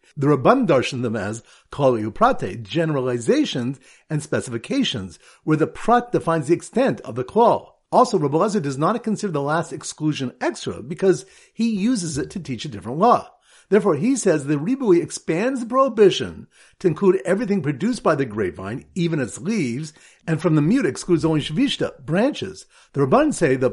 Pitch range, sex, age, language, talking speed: 145-210 Hz, male, 50-69, English, 165 wpm